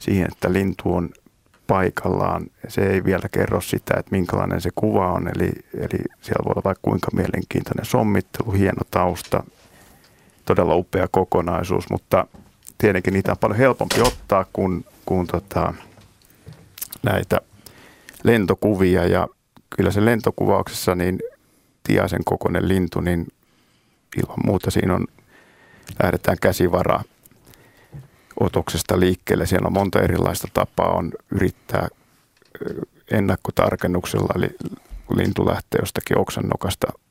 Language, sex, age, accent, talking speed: Finnish, male, 50-69, native, 120 wpm